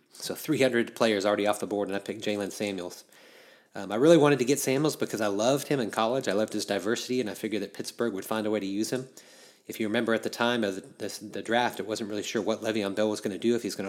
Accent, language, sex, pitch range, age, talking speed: American, English, male, 100-120 Hz, 30-49, 285 wpm